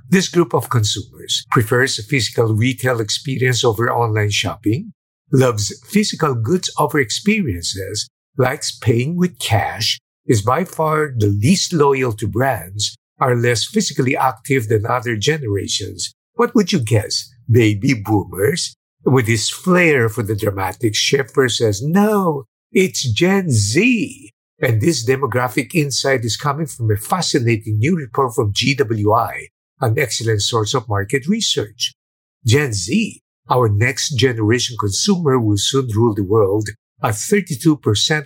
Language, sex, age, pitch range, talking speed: English, male, 50-69, 110-145 Hz, 130 wpm